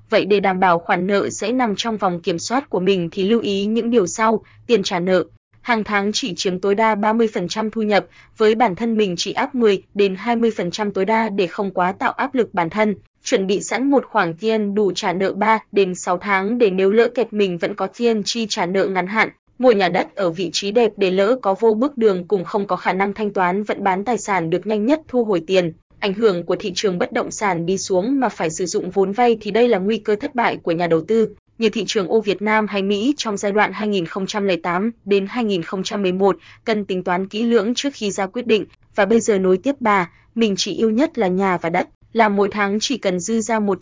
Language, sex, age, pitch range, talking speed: Vietnamese, female, 20-39, 190-225 Hz, 240 wpm